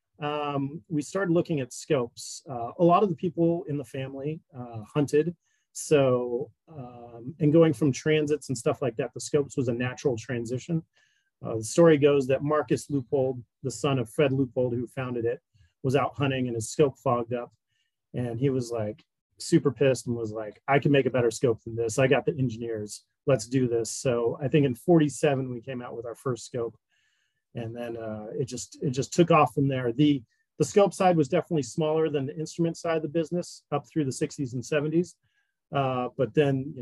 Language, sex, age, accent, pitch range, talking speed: English, male, 30-49, American, 120-155 Hz, 205 wpm